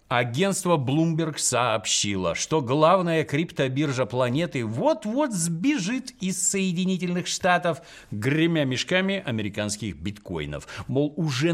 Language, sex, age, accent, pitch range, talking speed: Russian, male, 50-69, native, 115-180 Hz, 95 wpm